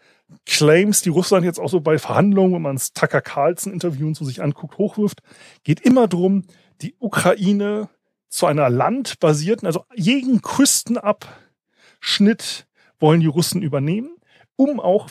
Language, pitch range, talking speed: German, 145-195 Hz, 140 wpm